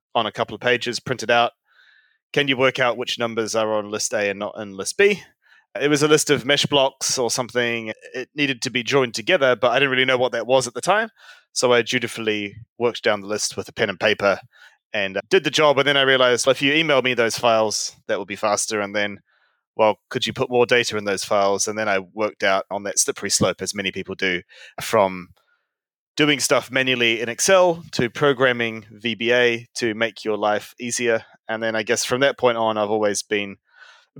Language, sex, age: English, male, 20-39